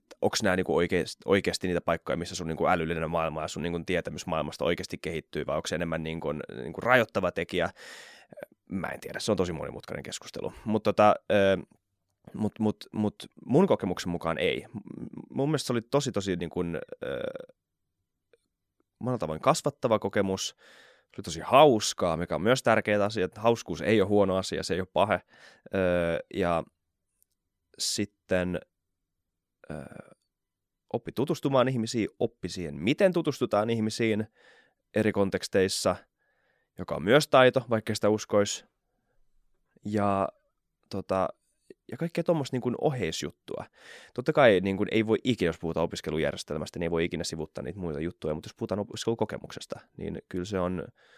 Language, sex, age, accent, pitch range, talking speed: Finnish, male, 20-39, native, 90-110 Hz, 135 wpm